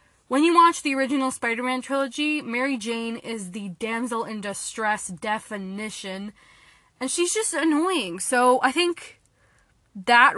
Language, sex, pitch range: English, female, 215-275 Hz